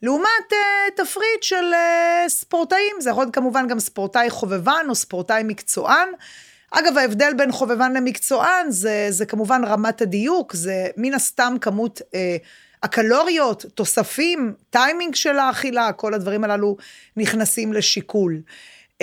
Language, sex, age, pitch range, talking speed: Hebrew, female, 30-49, 200-275 Hz, 130 wpm